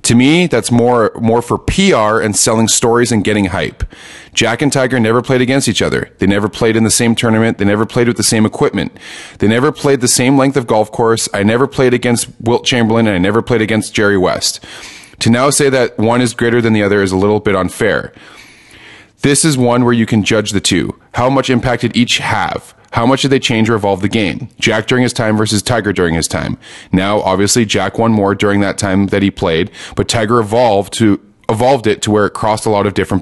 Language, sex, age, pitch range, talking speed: English, male, 30-49, 105-120 Hz, 235 wpm